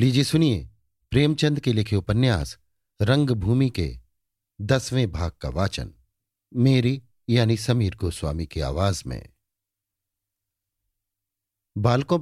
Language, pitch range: Hindi, 95-120 Hz